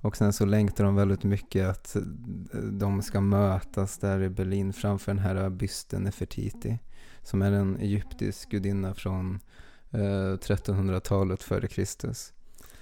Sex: male